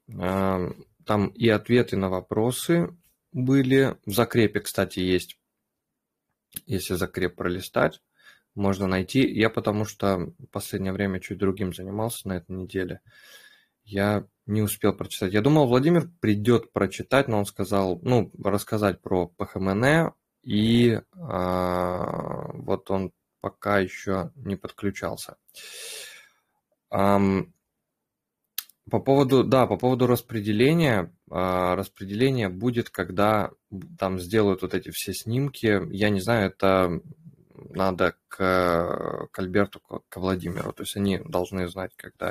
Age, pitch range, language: 20-39, 95-120 Hz, Russian